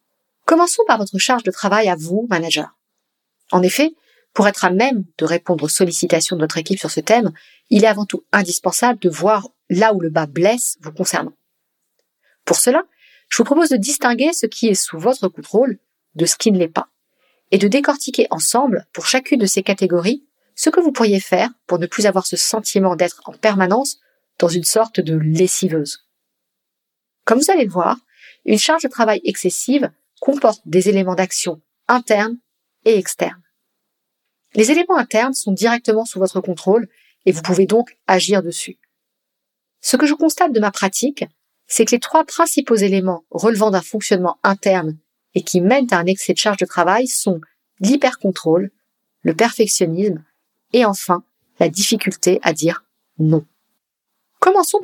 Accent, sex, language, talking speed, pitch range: French, female, French, 170 wpm, 180-250 Hz